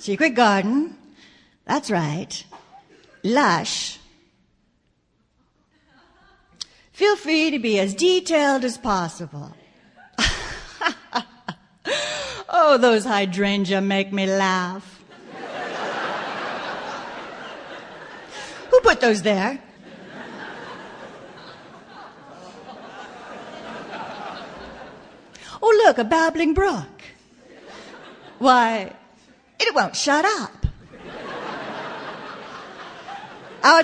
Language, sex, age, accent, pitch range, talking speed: English, female, 50-69, American, 205-275 Hz, 60 wpm